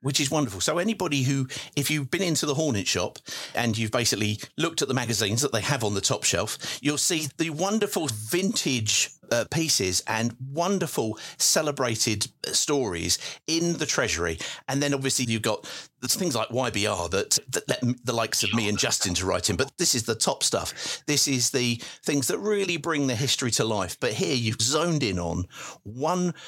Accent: British